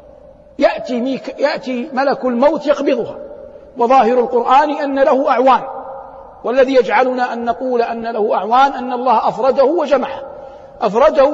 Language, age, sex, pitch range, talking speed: Arabic, 50-69, male, 250-315 Hz, 120 wpm